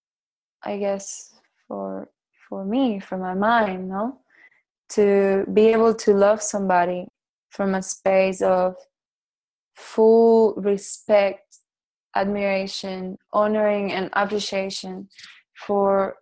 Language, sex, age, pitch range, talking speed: English, female, 20-39, 190-220 Hz, 95 wpm